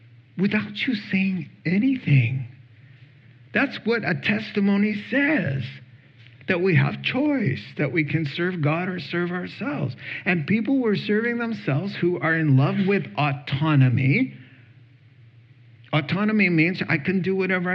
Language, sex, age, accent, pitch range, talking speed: English, male, 50-69, American, 130-185 Hz, 130 wpm